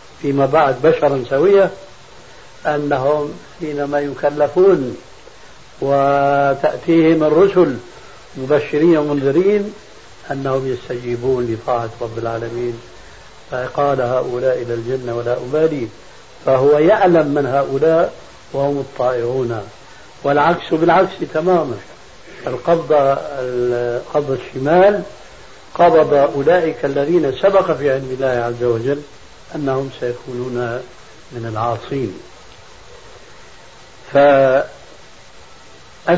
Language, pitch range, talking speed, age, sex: Arabic, 130-170 Hz, 80 wpm, 70-89, male